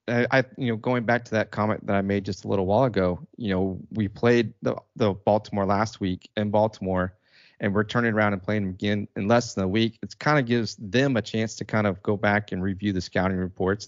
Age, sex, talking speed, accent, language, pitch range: 30-49, male, 240 wpm, American, English, 100-115 Hz